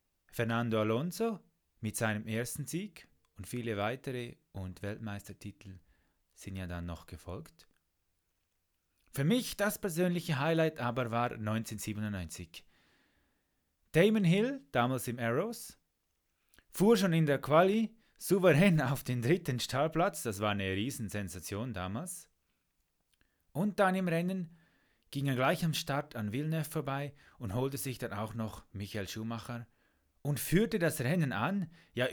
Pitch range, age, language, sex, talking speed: 100-155 Hz, 30-49, German, male, 135 wpm